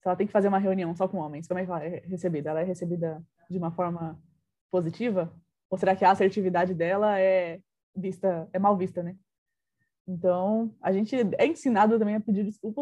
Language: Portuguese